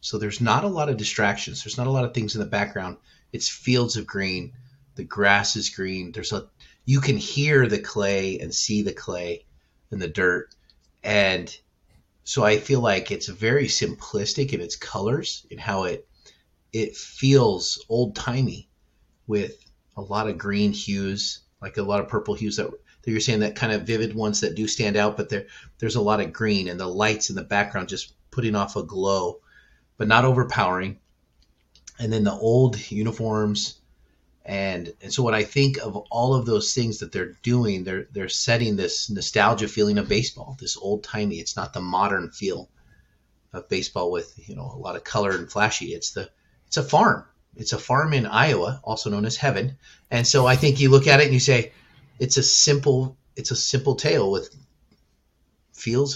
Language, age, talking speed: English, 30-49, 195 wpm